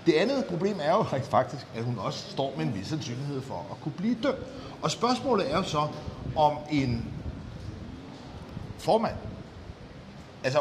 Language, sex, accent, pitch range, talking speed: Danish, male, native, 145-185 Hz, 155 wpm